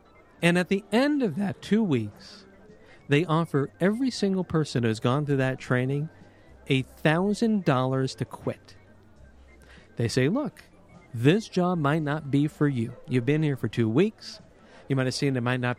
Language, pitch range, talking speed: English, 130-180 Hz, 175 wpm